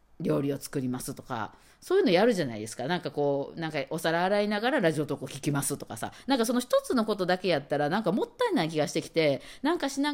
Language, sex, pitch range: Japanese, female, 145-230 Hz